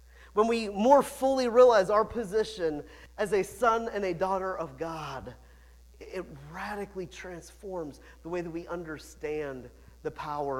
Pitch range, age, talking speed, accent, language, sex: 150-215 Hz, 40-59, 140 wpm, American, English, male